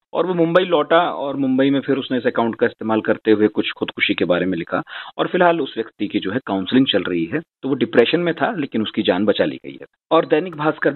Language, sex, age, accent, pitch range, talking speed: Hindi, male, 40-59, native, 110-160 Hz, 260 wpm